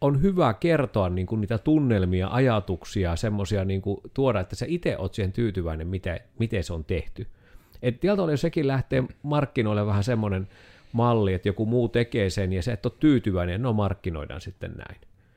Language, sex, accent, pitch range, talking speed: Finnish, male, native, 95-125 Hz, 185 wpm